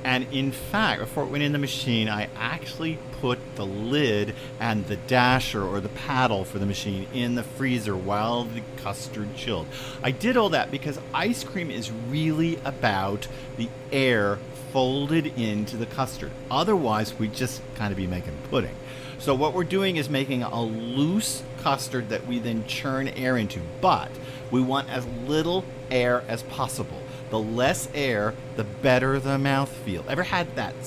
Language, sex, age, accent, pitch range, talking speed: English, male, 50-69, American, 110-130 Hz, 170 wpm